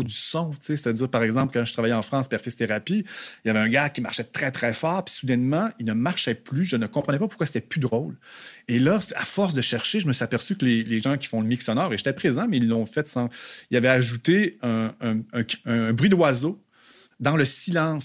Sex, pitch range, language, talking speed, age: male, 115-155 Hz, French, 255 wpm, 40-59